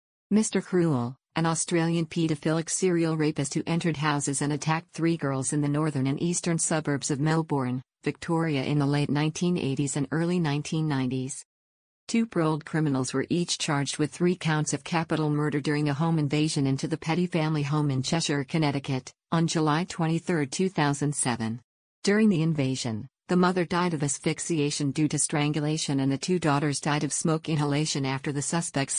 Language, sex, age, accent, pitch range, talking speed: English, female, 50-69, American, 140-165 Hz, 165 wpm